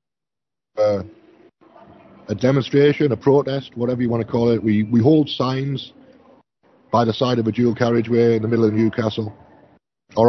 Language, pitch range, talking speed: English, 115-135 Hz, 165 wpm